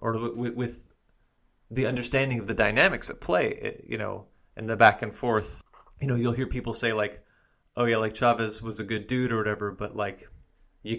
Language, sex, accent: English, male, American